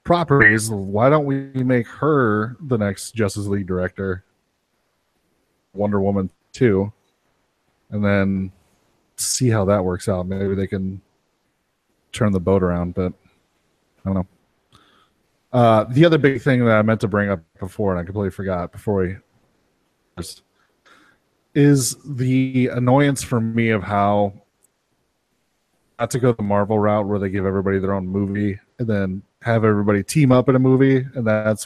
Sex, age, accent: male, 30-49, American